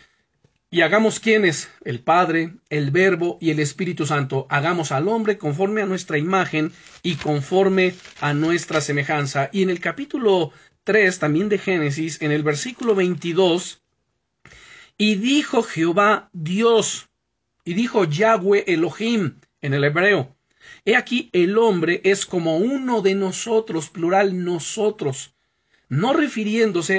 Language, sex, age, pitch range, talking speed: Spanish, male, 40-59, 150-200 Hz, 130 wpm